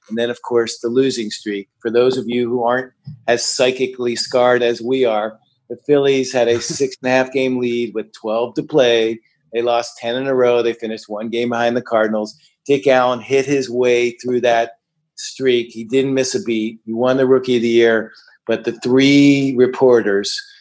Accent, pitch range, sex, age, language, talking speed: American, 115-130 Hz, male, 50-69, English, 200 wpm